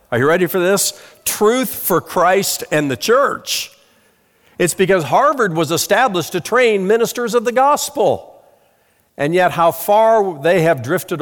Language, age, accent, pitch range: English, 50-69, American, 140-195 Hz